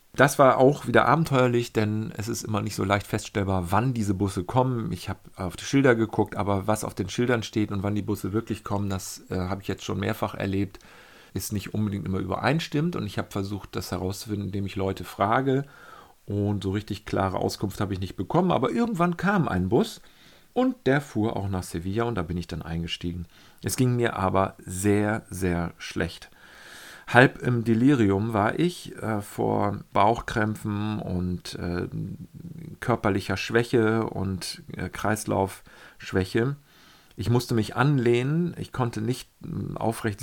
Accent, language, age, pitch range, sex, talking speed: German, German, 40-59, 95-120 Hz, male, 170 wpm